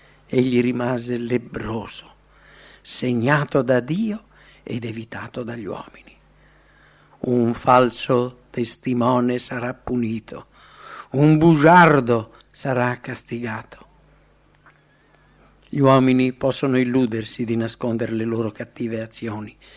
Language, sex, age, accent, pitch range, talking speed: English, male, 60-79, Italian, 120-150 Hz, 90 wpm